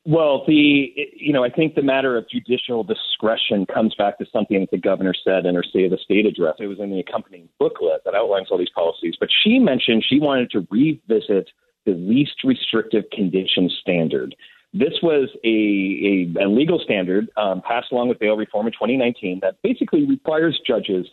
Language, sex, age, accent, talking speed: English, male, 40-59, American, 190 wpm